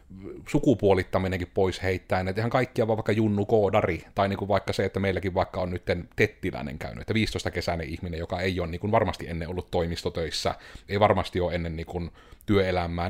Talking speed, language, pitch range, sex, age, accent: 190 wpm, Finnish, 90-100 Hz, male, 30-49, native